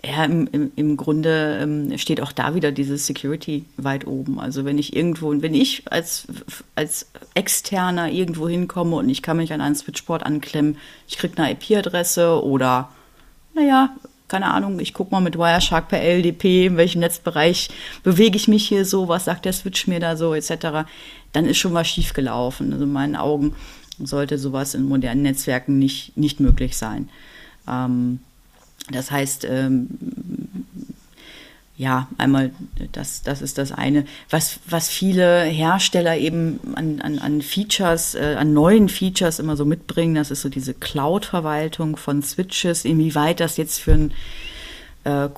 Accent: German